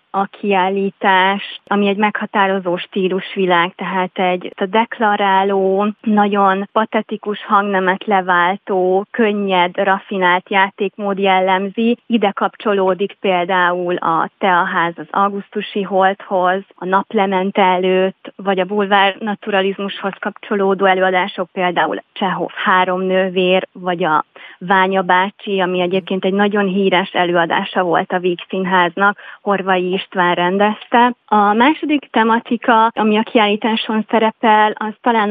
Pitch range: 185-210 Hz